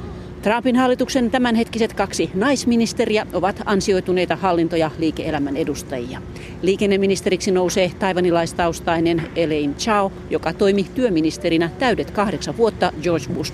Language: Finnish